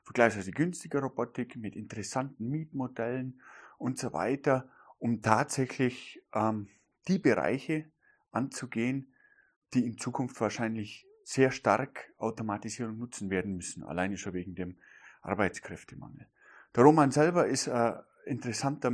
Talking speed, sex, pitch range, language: 115 wpm, male, 105-135 Hz, German